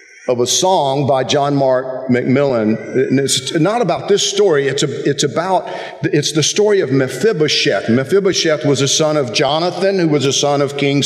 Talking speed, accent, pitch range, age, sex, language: 185 wpm, American, 125-160 Hz, 50-69, male, English